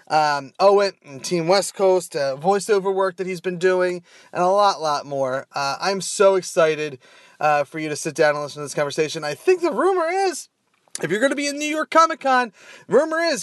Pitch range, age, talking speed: 165-205 Hz, 30-49, 225 wpm